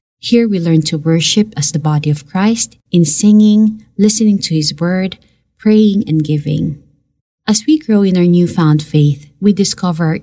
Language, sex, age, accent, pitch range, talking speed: Filipino, female, 20-39, native, 150-195 Hz, 170 wpm